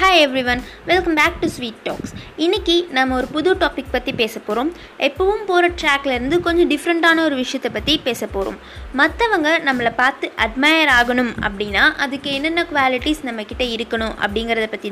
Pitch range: 230-315 Hz